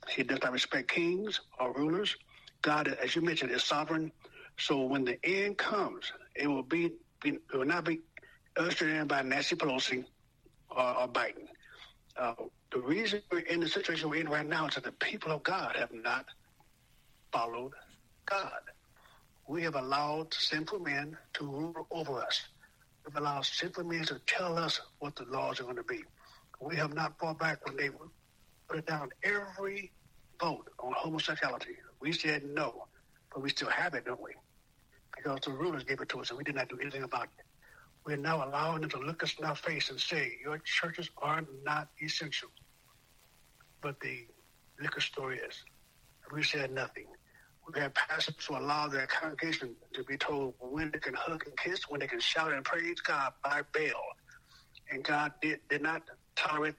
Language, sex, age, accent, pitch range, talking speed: English, male, 60-79, American, 145-170 Hz, 185 wpm